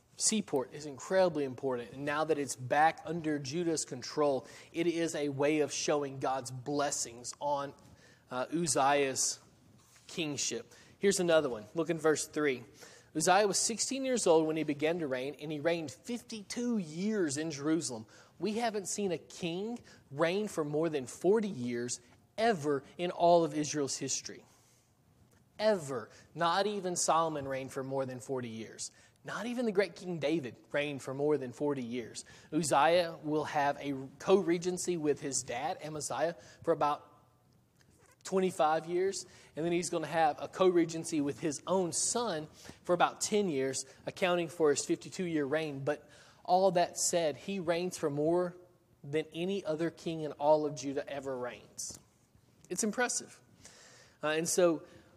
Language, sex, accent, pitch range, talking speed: English, male, American, 140-175 Hz, 155 wpm